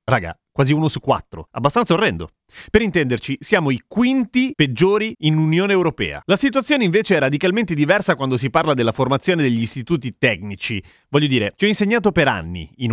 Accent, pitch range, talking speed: native, 120-190 Hz, 175 wpm